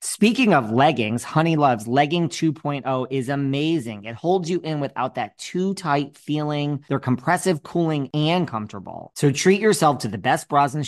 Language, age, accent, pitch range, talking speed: English, 20-39, American, 115-155 Hz, 170 wpm